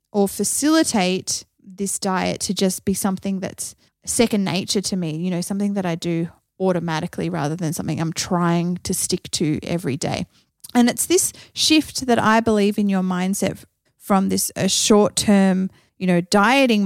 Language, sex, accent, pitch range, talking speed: English, female, Australian, 190-225 Hz, 165 wpm